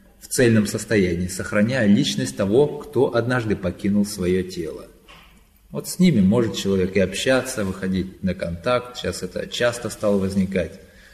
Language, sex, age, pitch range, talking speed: Russian, male, 20-39, 90-110 Hz, 140 wpm